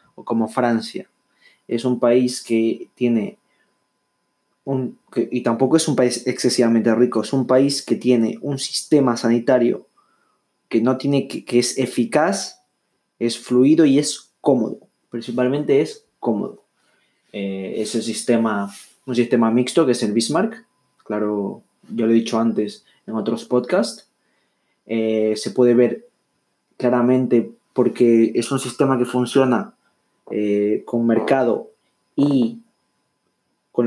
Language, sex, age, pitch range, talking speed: Spanish, male, 20-39, 115-130 Hz, 135 wpm